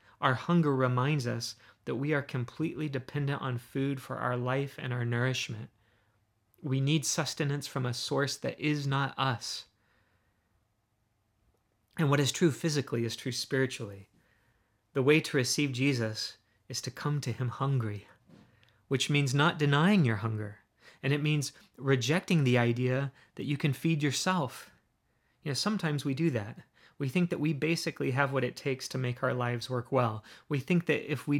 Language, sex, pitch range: English, male, 120-145 Hz